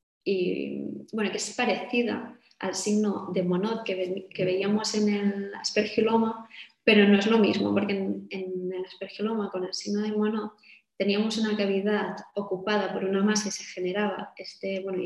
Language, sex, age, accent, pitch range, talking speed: Spanish, female, 20-39, Spanish, 195-215 Hz, 170 wpm